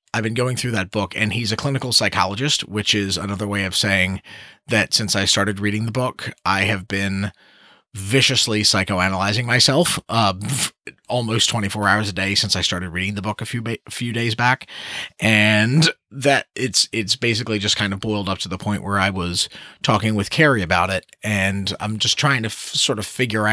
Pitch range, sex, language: 100-115 Hz, male, English